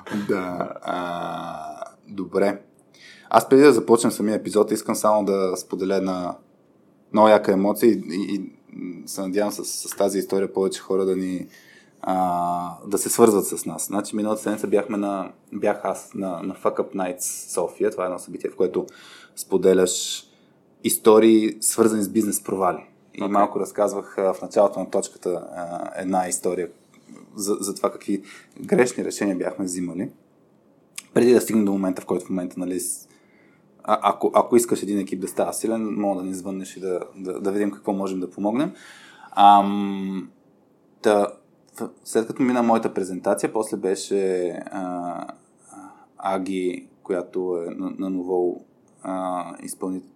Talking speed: 155 wpm